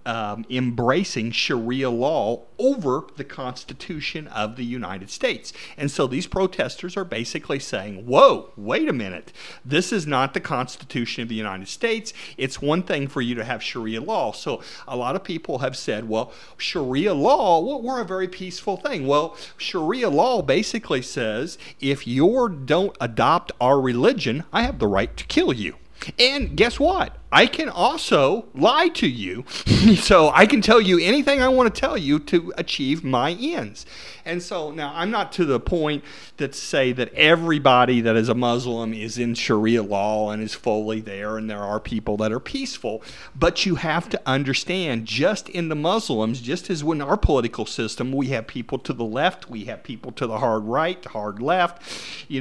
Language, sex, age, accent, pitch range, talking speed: English, male, 50-69, American, 120-185 Hz, 180 wpm